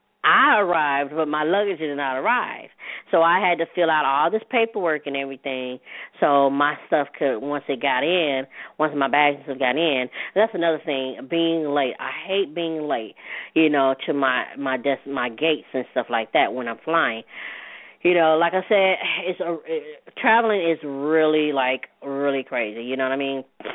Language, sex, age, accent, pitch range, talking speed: English, female, 20-39, American, 130-170 Hz, 185 wpm